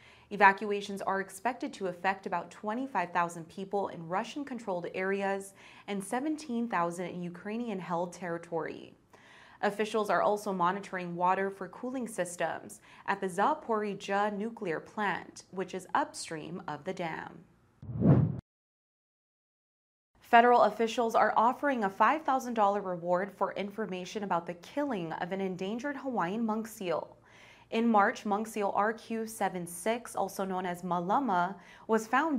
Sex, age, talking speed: female, 20-39, 120 wpm